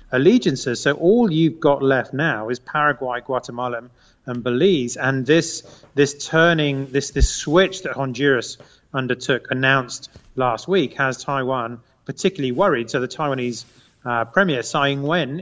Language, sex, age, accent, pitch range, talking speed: English, male, 30-49, British, 120-140 Hz, 145 wpm